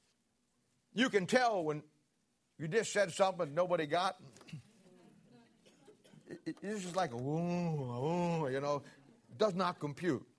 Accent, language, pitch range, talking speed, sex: American, English, 165-215 Hz, 120 wpm, male